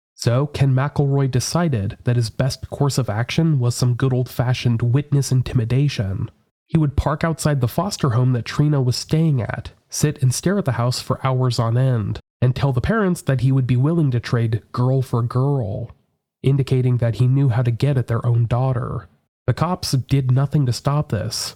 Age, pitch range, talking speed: 30-49, 120-140 Hz, 195 wpm